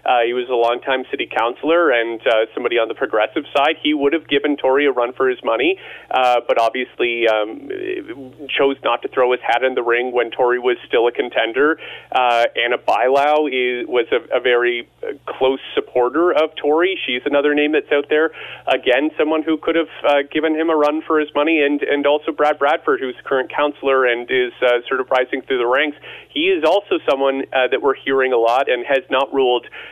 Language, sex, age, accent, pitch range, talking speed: English, male, 30-49, American, 125-155 Hz, 210 wpm